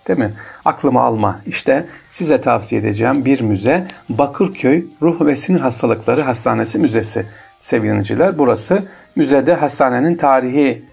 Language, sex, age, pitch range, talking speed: Turkish, male, 50-69, 115-145 Hz, 120 wpm